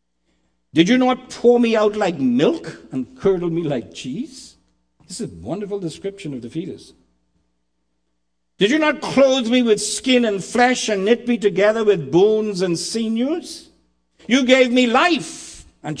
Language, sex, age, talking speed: English, male, 60-79, 160 wpm